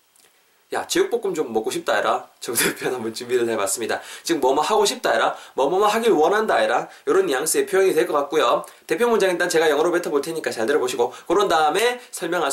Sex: male